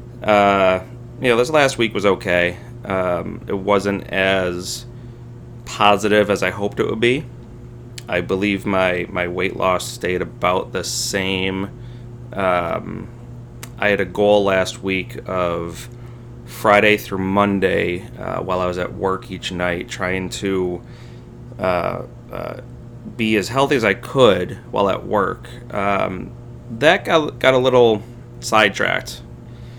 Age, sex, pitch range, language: 30-49, male, 95-120 Hz, English